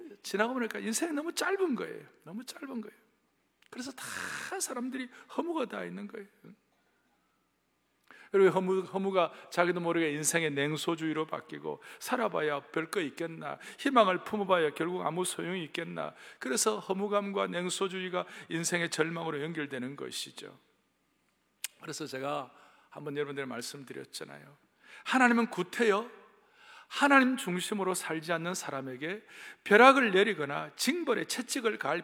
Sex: male